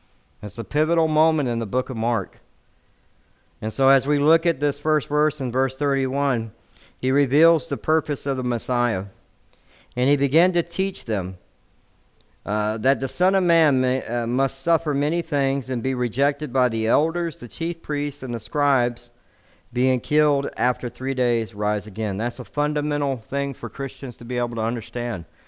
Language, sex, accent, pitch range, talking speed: English, male, American, 115-150 Hz, 175 wpm